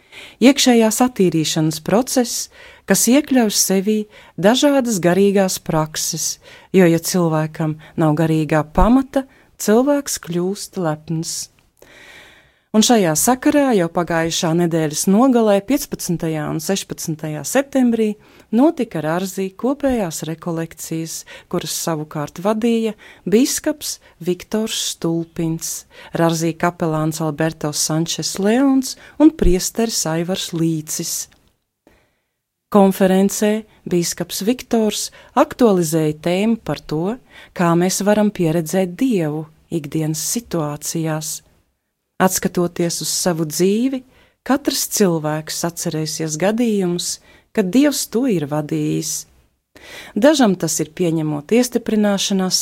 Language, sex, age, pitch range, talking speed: English, female, 40-59, 160-215 Hz, 90 wpm